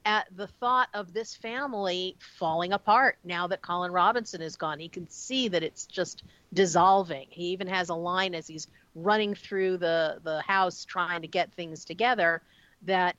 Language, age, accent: English, 50-69, American